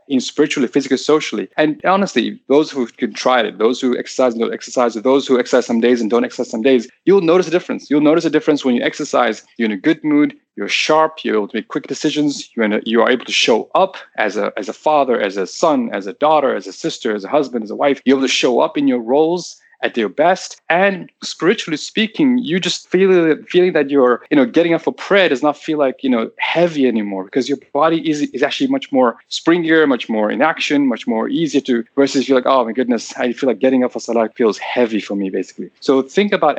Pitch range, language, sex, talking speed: 125-175 Hz, English, male, 250 wpm